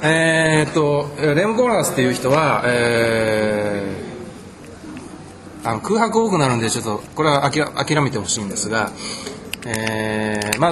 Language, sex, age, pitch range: Japanese, male, 20-39, 115-180 Hz